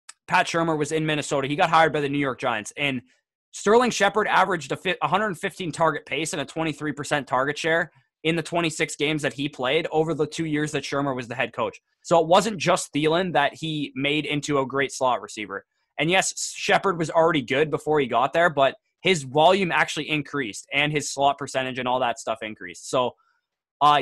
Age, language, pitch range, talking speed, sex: 20-39, English, 135-165 Hz, 205 wpm, male